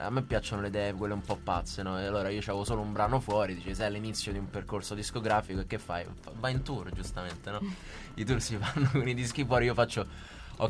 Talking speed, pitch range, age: 245 wpm, 100-125 Hz, 20-39